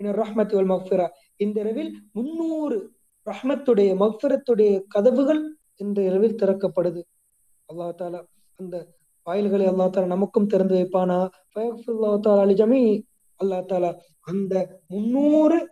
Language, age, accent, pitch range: Tamil, 20-39, native, 185-210 Hz